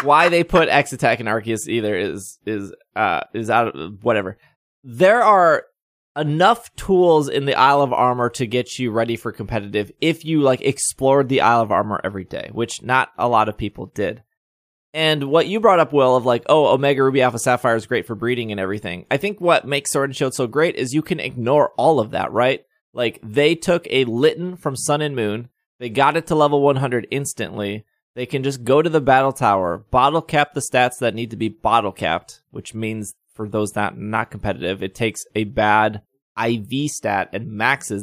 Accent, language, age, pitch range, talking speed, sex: American, English, 20-39, 110-140 Hz, 210 wpm, male